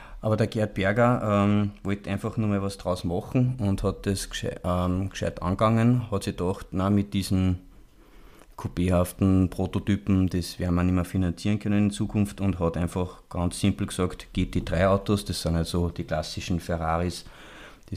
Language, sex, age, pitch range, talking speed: German, male, 30-49, 90-105 Hz, 165 wpm